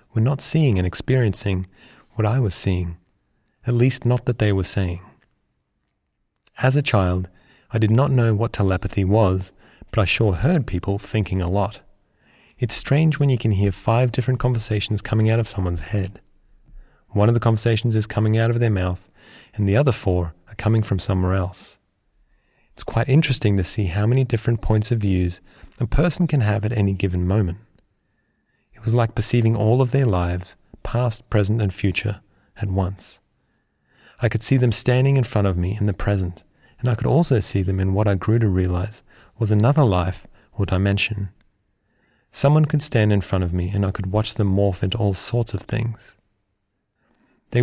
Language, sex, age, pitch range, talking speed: English, male, 30-49, 95-120 Hz, 185 wpm